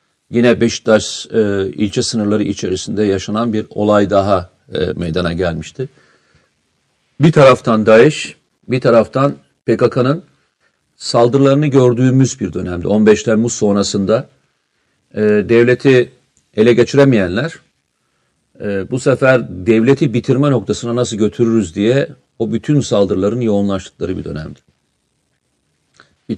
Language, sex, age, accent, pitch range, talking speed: Turkish, male, 50-69, native, 90-120 Hz, 105 wpm